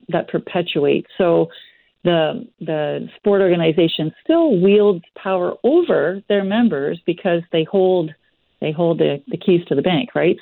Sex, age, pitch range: female, 50-69, 150-190 Hz